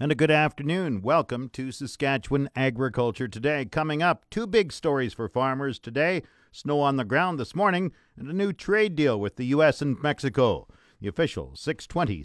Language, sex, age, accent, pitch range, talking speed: English, male, 50-69, American, 125-165 Hz, 175 wpm